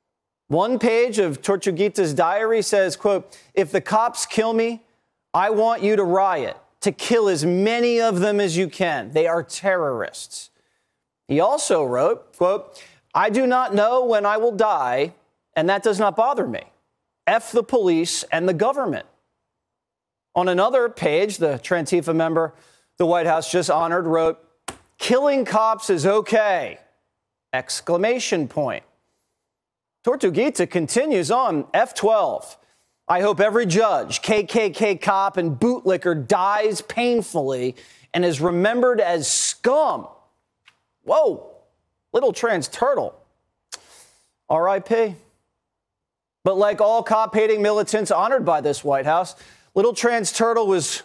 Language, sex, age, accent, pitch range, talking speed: English, male, 40-59, American, 180-230 Hz, 130 wpm